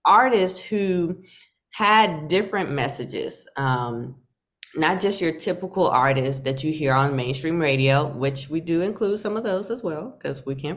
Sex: female